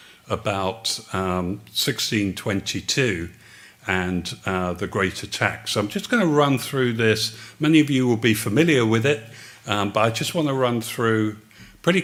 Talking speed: 165 wpm